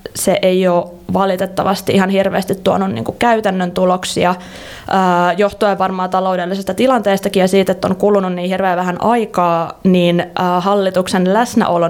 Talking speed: 130 wpm